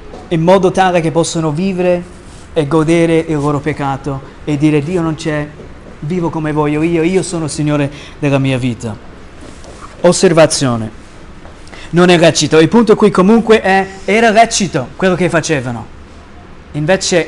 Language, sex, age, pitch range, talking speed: Italian, male, 30-49, 145-190 Hz, 145 wpm